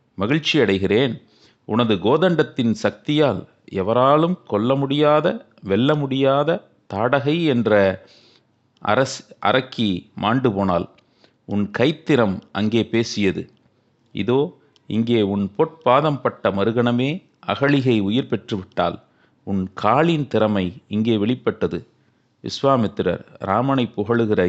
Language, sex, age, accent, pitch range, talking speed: Tamil, male, 40-59, native, 105-145 Hz, 85 wpm